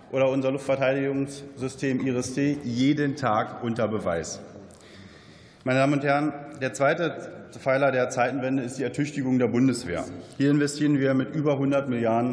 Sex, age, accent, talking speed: male, 40-59, German, 140 wpm